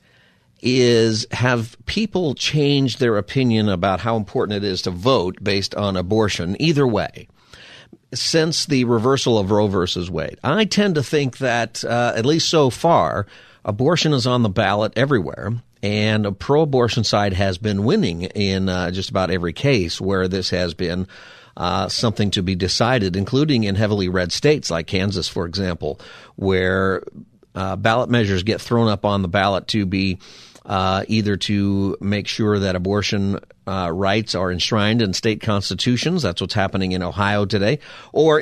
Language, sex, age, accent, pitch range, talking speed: English, male, 50-69, American, 95-120 Hz, 165 wpm